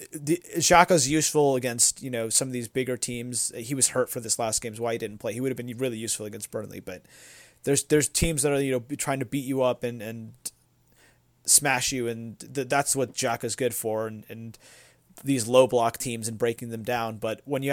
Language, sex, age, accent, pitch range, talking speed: English, male, 30-49, American, 115-135 Hz, 230 wpm